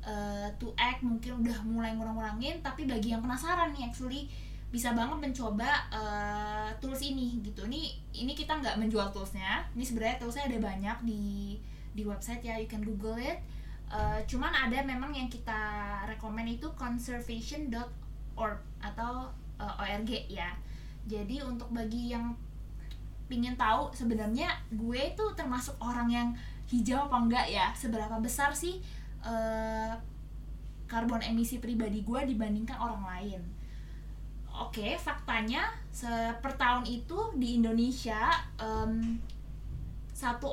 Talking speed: 130 wpm